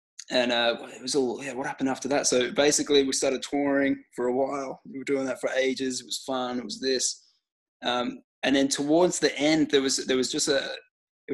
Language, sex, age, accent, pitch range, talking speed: English, male, 20-39, Australian, 125-150 Hz, 230 wpm